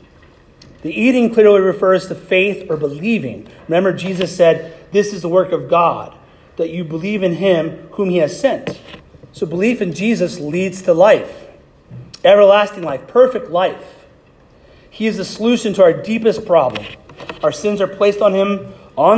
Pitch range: 155-195 Hz